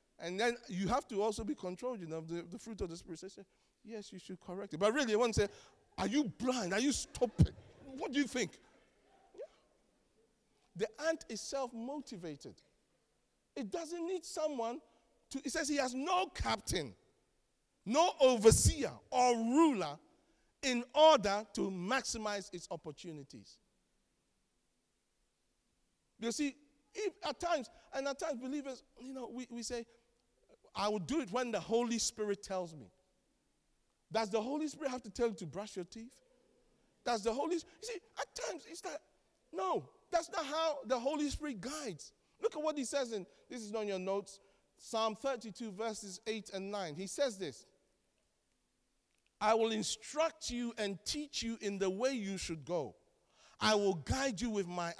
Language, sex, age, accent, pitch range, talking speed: English, male, 50-69, Nigerian, 195-285 Hz, 170 wpm